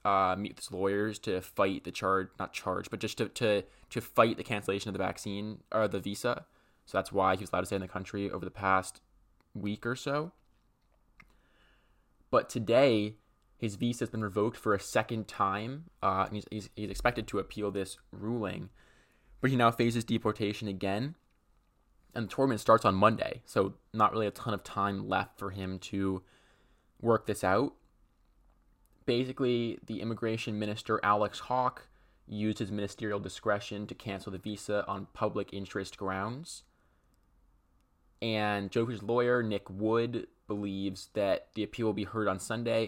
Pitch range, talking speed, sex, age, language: 95-115 Hz, 170 wpm, male, 20-39, English